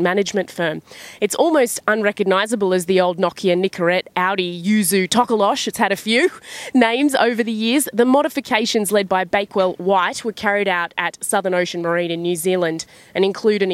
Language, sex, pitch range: English, female, 180-215 Hz